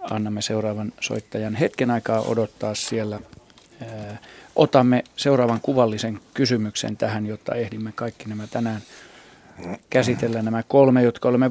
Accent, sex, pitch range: native, male, 110-125 Hz